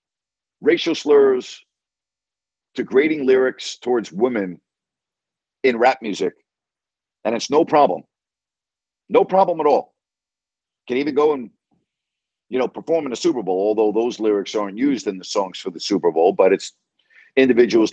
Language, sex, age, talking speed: English, male, 50-69, 145 wpm